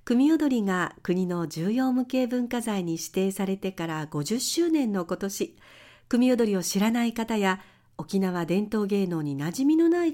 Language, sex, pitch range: Japanese, female, 180-265 Hz